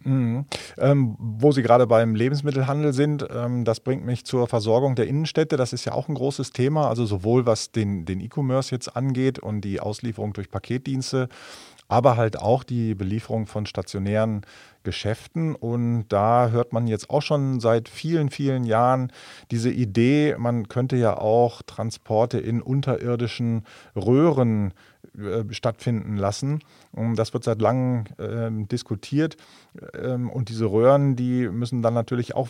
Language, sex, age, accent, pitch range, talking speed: German, male, 40-59, German, 110-130 Hz, 150 wpm